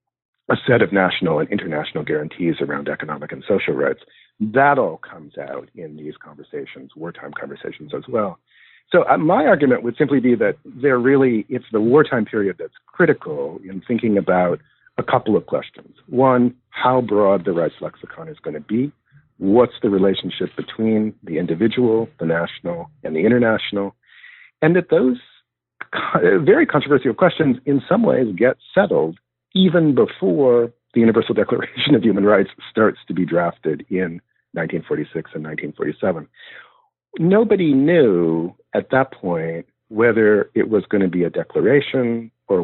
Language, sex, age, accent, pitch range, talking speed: English, male, 50-69, American, 100-155 Hz, 150 wpm